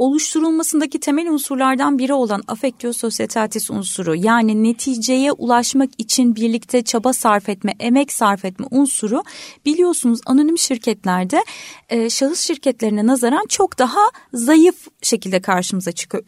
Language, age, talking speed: Turkish, 30-49, 120 wpm